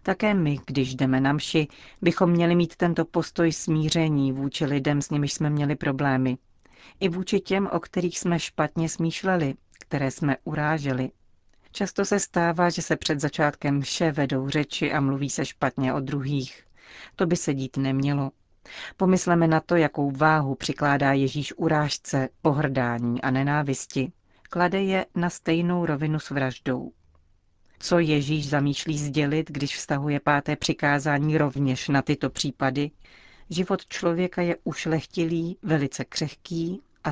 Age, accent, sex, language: 40-59, native, female, Czech